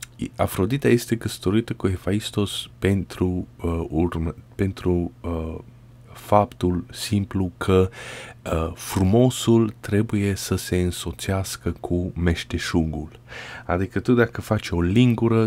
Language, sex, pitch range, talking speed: Romanian, male, 85-115 Hz, 105 wpm